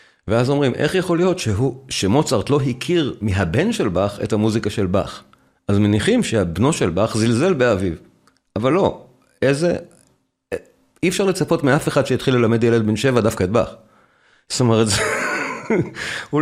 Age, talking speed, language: 40-59, 155 wpm, Hebrew